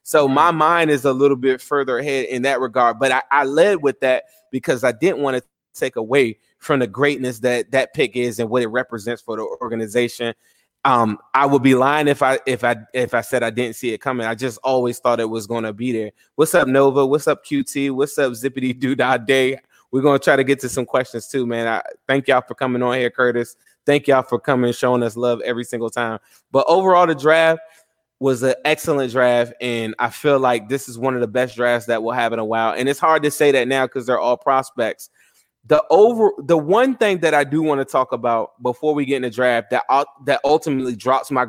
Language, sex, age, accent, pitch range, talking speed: English, male, 20-39, American, 120-145 Hz, 240 wpm